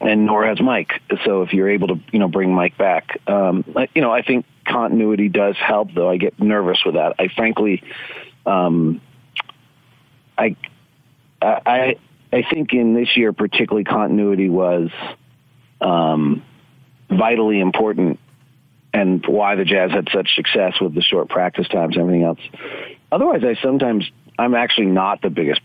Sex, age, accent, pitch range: male, 40-59, American, 95-130 Hz